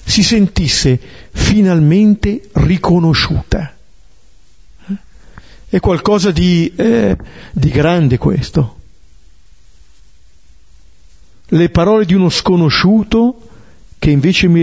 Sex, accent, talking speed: male, native, 75 wpm